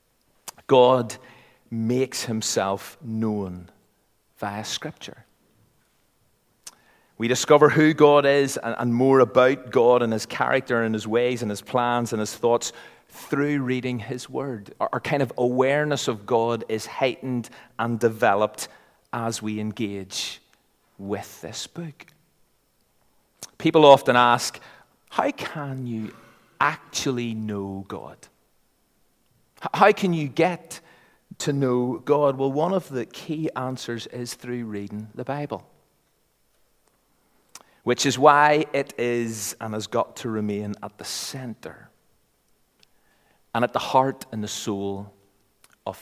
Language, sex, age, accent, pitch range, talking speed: English, male, 30-49, British, 110-135 Hz, 125 wpm